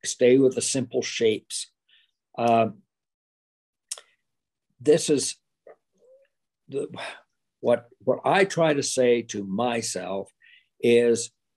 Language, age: English, 60-79